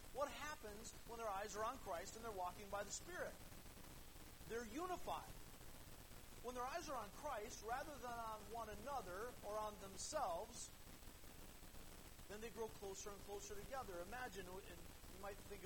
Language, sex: English, male